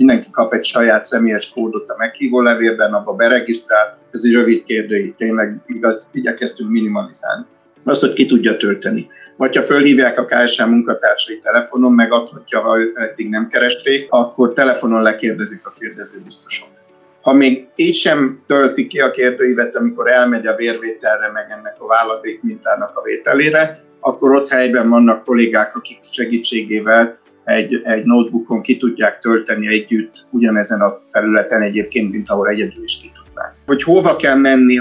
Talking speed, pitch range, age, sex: 150 wpm, 115-135 Hz, 50-69, male